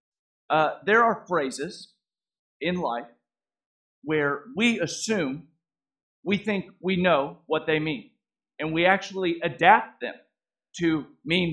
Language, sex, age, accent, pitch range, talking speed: English, male, 40-59, American, 155-200 Hz, 120 wpm